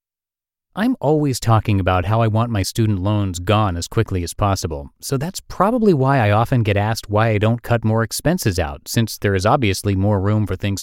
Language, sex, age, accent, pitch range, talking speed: English, male, 30-49, American, 95-130 Hz, 210 wpm